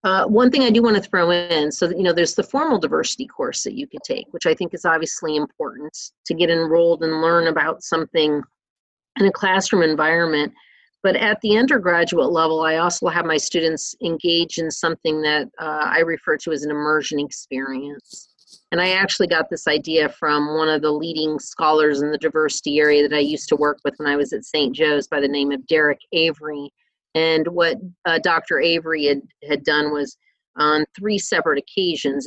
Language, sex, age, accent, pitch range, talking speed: English, female, 40-59, American, 150-180 Hz, 200 wpm